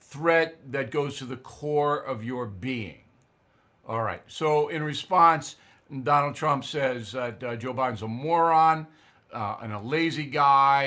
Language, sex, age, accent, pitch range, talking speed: English, male, 50-69, American, 115-160 Hz, 155 wpm